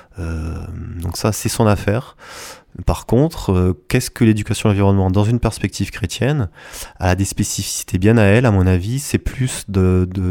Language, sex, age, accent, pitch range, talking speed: French, male, 20-39, French, 90-110 Hz, 175 wpm